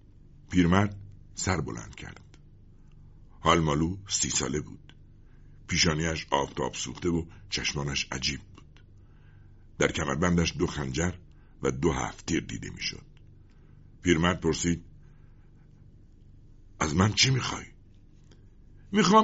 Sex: male